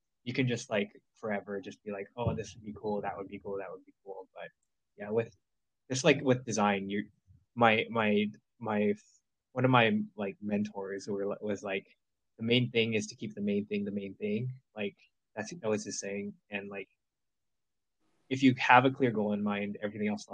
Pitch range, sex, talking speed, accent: 100-125 Hz, male, 210 wpm, American